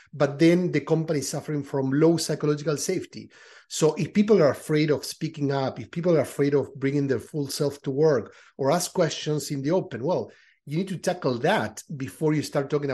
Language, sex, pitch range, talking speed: English, male, 135-170 Hz, 210 wpm